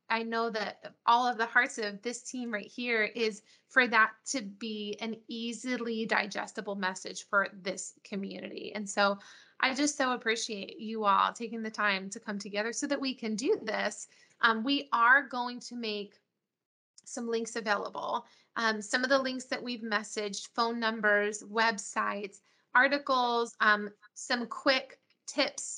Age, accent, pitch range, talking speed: 20-39, American, 210-250 Hz, 160 wpm